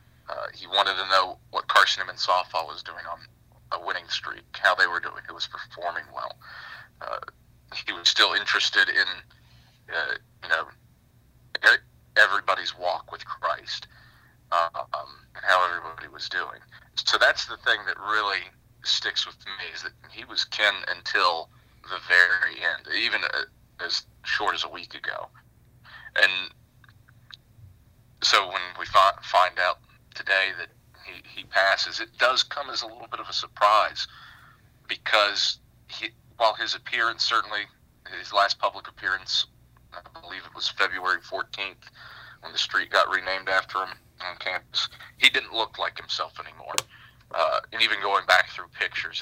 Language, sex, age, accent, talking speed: English, male, 30-49, American, 155 wpm